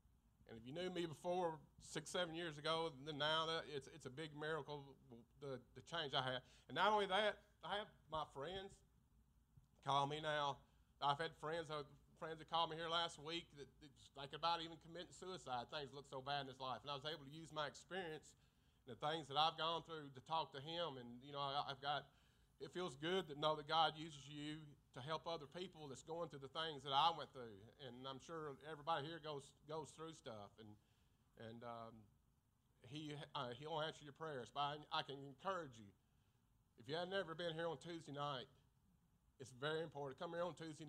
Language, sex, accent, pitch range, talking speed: English, male, American, 135-165 Hz, 215 wpm